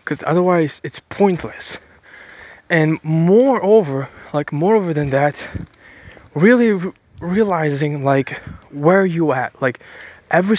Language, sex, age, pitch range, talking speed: English, male, 20-39, 140-190 Hz, 110 wpm